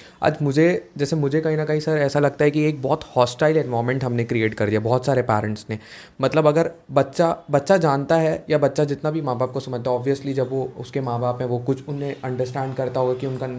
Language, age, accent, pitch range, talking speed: Hindi, 20-39, native, 125-145 Hz, 240 wpm